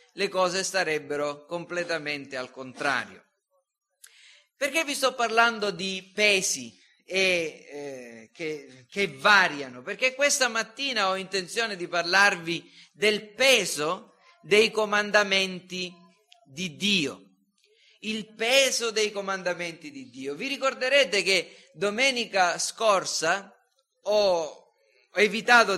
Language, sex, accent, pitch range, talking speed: Italian, male, native, 170-230 Hz, 100 wpm